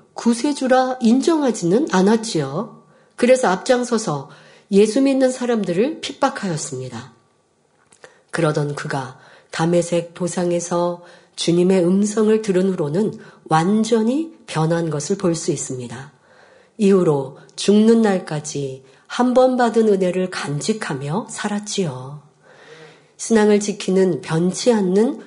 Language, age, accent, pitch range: Korean, 40-59, native, 165-225 Hz